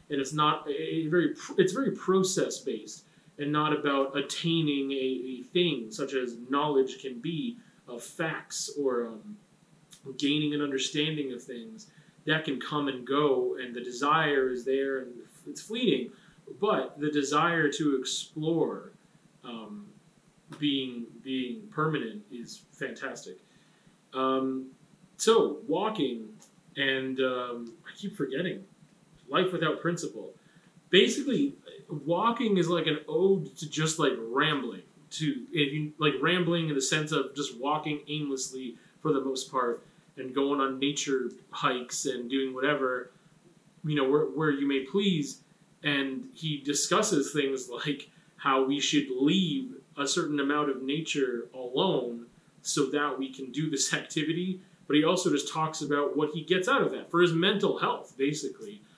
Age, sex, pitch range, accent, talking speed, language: 30-49, male, 135-175 Hz, American, 140 wpm, English